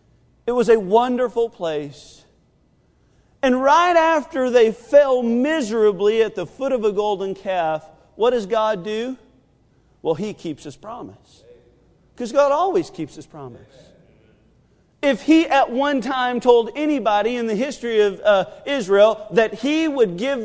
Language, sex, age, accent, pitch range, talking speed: English, male, 40-59, American, 180-245 Hz, 145 wpm